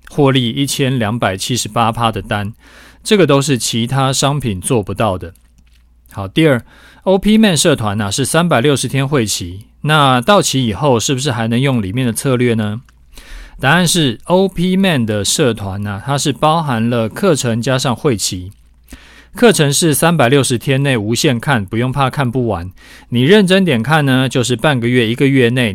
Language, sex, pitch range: Chinese, male, 110-150 Hz